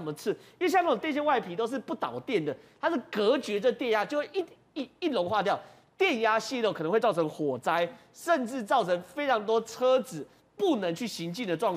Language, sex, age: Chinese, male, 30-49